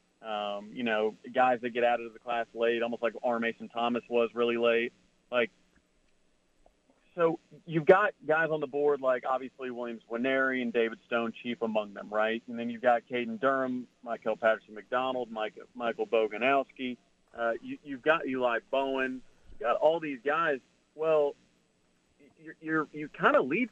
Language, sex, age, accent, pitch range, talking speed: English, male, 40-59, American, 115-140 Hz, 170 wpm